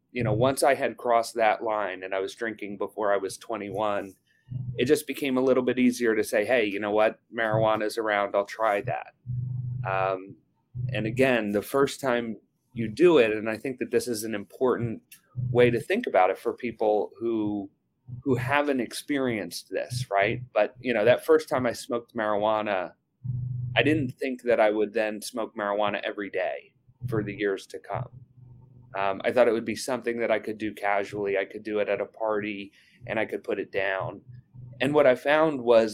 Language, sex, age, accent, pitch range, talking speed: English, male, 30-49, American, 105-125 Hz, 200 wpm